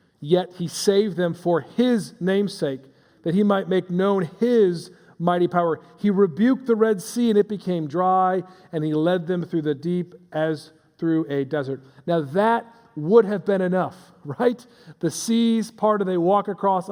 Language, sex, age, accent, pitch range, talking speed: English, male, 40-59, American, 145-180 Hz, 175 wpm